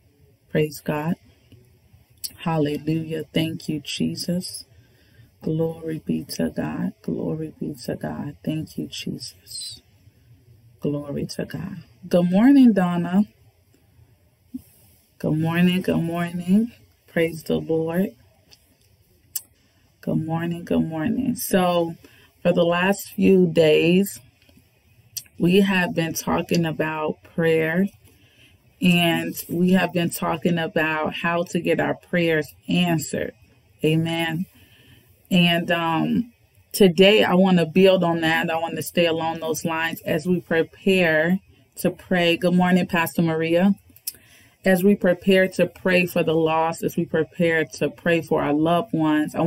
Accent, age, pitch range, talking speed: American, 30-49, 120-175 Hz, 125 wpm